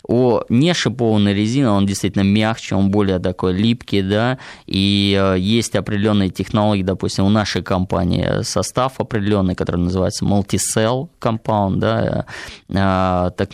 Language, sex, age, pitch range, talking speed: Russian, male, 20-39, 95-110 Hz, 125 wpm